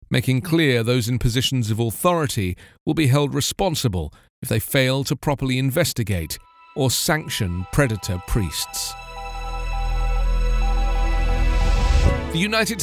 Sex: male